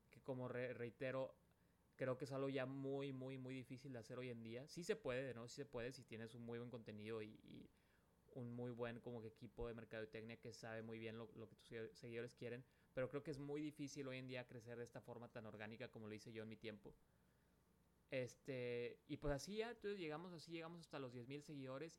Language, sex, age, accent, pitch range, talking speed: Spanish, male, 30-49, Mexican, 115-135 Hz, 230 wpm